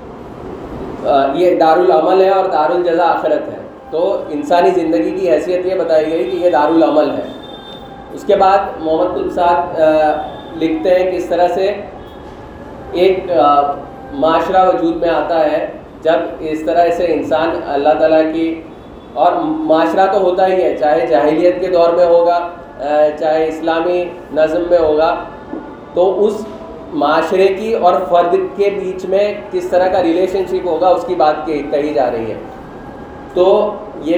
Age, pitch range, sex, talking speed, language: 30-49, 160-185 Hz, male, 150 wpm, Urdu